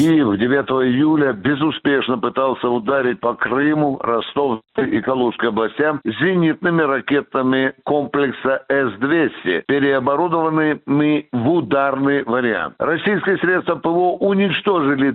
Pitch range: 140-185 Hz